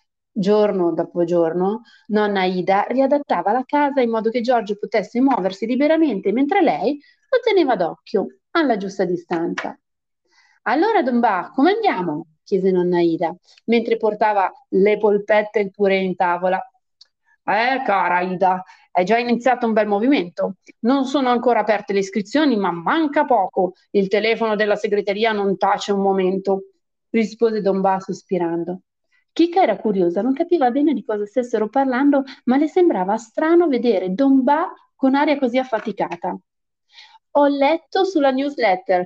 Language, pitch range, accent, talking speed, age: Italian, 195-270 Hz, native, 145 wpm, 30-49